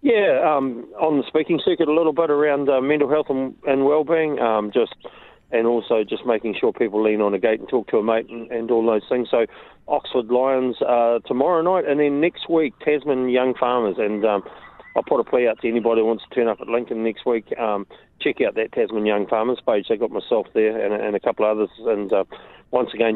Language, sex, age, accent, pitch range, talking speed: English, male, 40-59, Australian, 105-135 Hz, 235 wpm